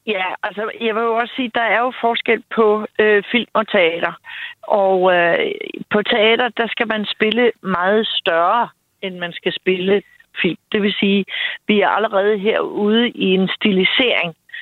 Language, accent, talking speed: Danish, native, 170 wpm